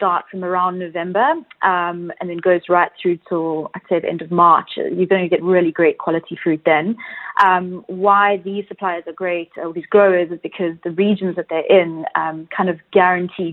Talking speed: 205 wpm